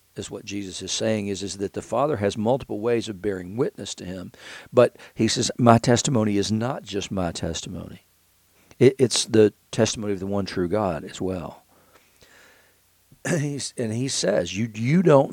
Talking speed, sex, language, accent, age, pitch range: 180 wpm, male, English, American, 50-69, 100-120 Hz